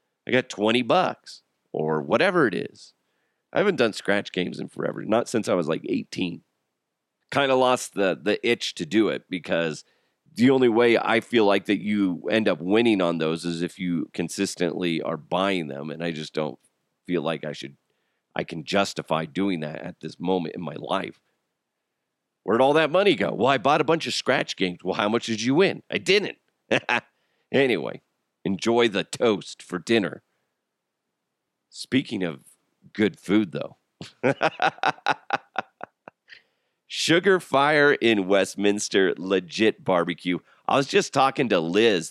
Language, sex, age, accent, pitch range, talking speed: English, male, 40-59, American, 85-115 Hz, 160 wpm